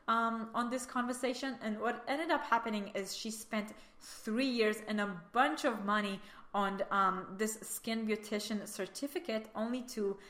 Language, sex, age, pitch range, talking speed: English, female, 20-39, 195-240 Hz, 155 wpm